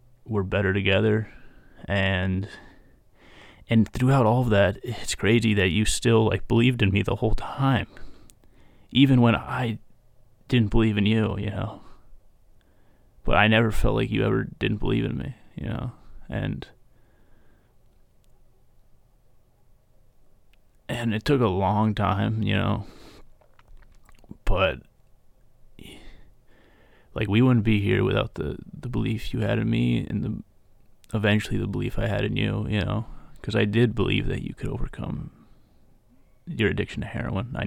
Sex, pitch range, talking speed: male, 100-120 Hz, 145 wpm